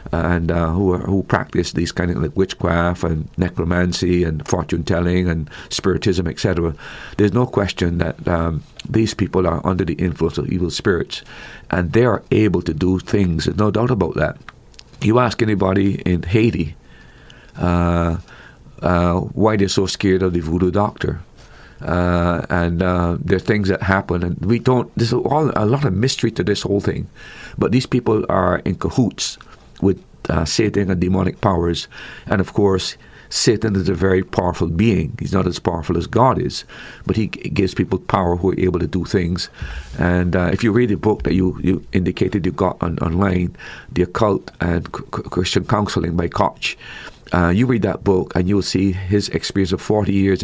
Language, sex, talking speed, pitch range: English, male, 180 wpm, 85-100 Hz